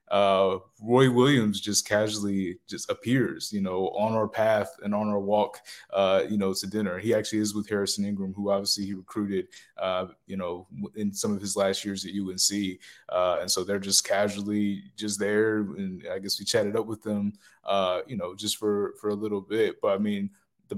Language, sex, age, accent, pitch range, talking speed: English, male, 20-39, American, 100-115 Hz, 205 wpm